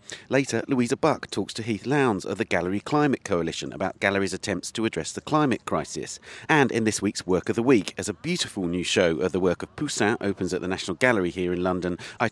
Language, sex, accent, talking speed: English, male, British, 230 wpm